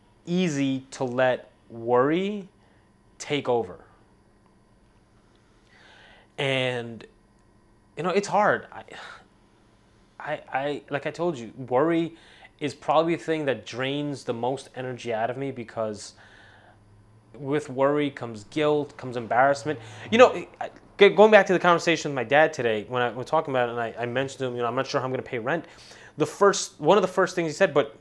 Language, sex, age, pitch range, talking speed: English, male, 20-39, 120-175 Hz, 175 wpm